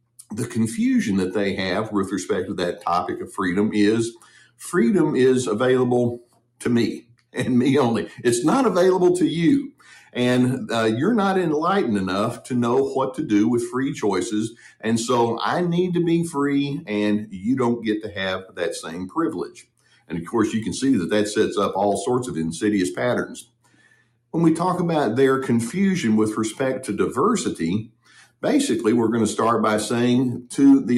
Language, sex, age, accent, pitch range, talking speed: English, male, 50-69, American, 110-155 Hz, 170 wpm